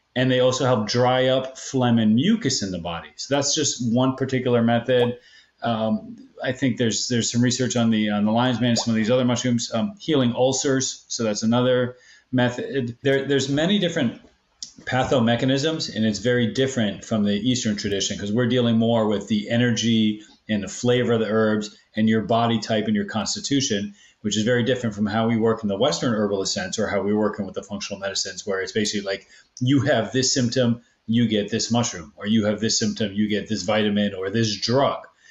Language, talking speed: English, 210 wpm